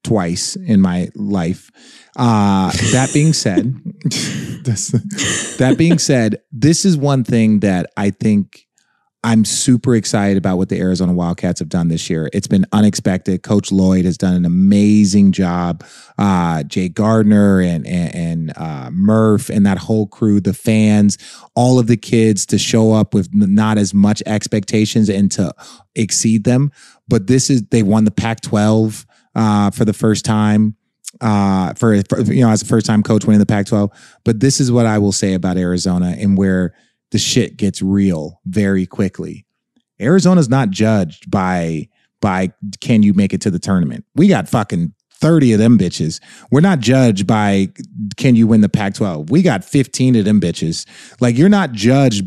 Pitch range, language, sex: 95-120 Hz, English, male